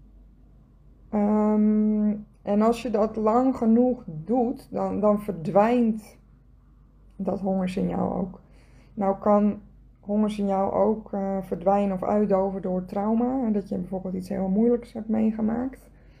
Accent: Dutch